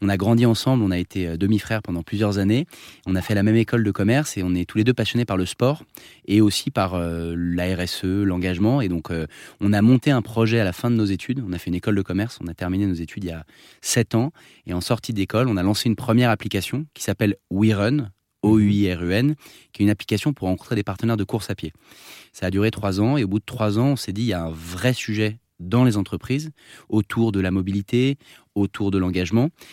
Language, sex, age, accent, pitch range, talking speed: French, male, 20-39, French, 90-115 Hz, 245 wpm